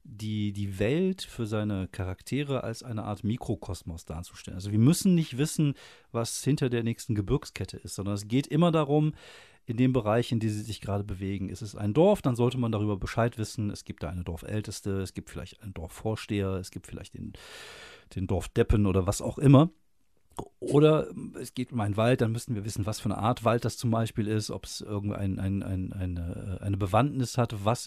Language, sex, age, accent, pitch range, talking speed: German, male, 40-59, German, 105-130 Hz, 205 wpm